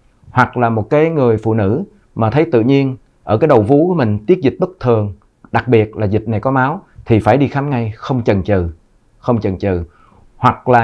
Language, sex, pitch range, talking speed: Vietnamese, male, 110-140 Hz, 225 wpm